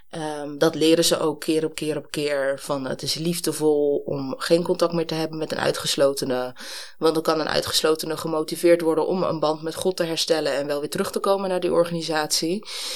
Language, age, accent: Dutch, 20-39, Dutch